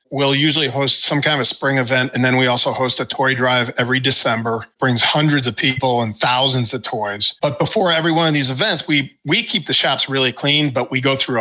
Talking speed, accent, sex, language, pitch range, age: 240 wpm, American, male, English, 125-150 Hz, 40-59